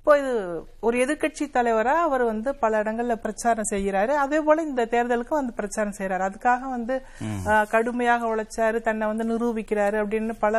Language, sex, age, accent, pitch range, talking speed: Tamil, female, 60-79, native, 190-245 Hz, 155 wpm